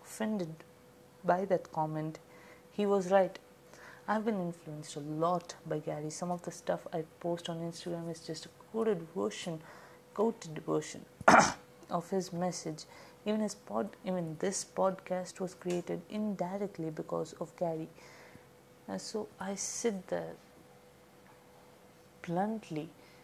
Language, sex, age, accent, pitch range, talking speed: English, female, 30-49, Indian, 165-195 Hz, 130 wpm